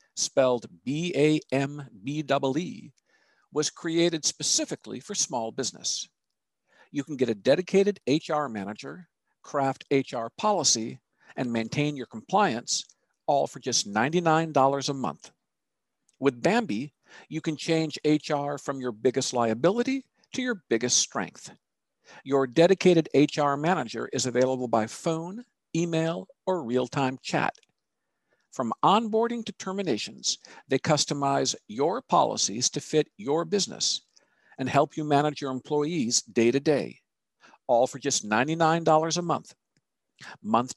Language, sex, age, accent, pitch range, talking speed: English, male, 50-69, American, 130-170 Hz, 120 wpm